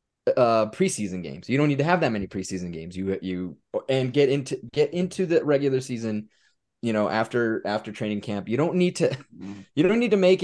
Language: English